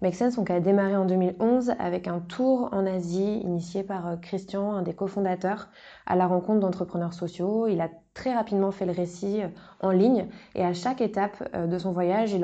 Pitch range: 175-200 Hz